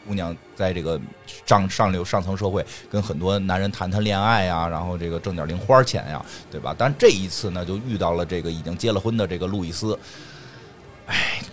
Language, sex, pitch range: Chinese, male, 95-135 Hz